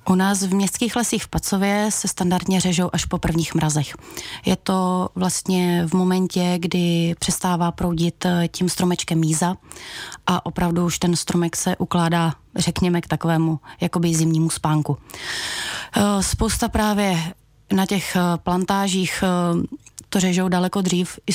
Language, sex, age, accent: Czech, female, 30-49, native